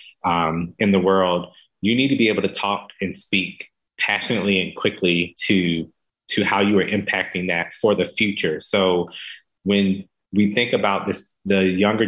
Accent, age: American, 30-49